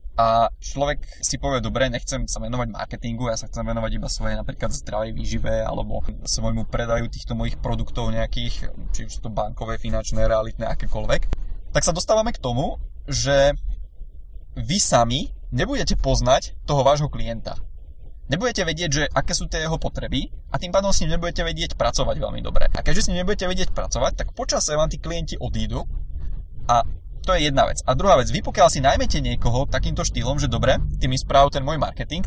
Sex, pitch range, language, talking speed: male, 115-155 Hz, Czech, 185 wpm